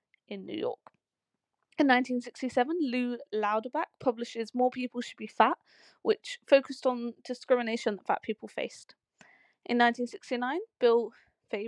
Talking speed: 120 wpm